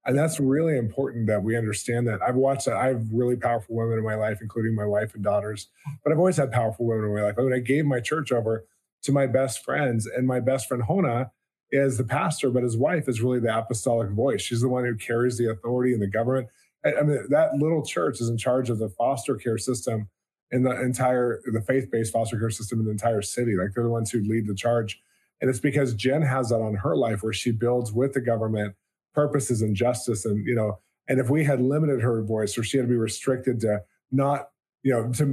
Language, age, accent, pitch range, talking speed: English, 20-39, American, 110-135 Hz, 240 wpm